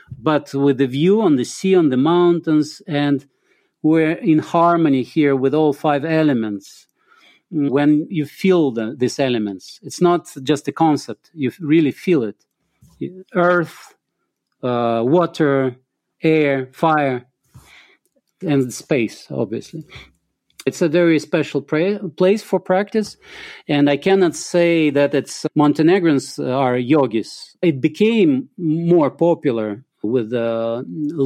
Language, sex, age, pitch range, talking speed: English, male, 40-59, 135-170 Hz, 125 wpm